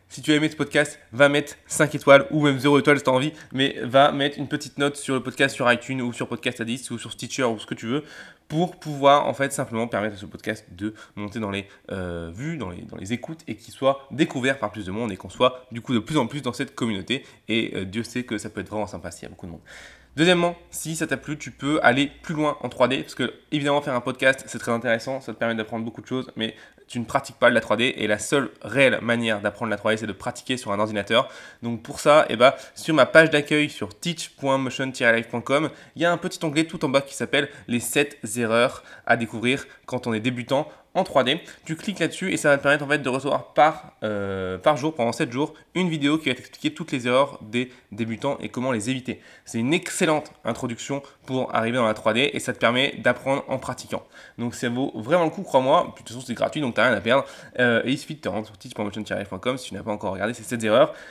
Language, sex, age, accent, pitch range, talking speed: French, male, 20-39, French, 115-145 Hz, 260 wpm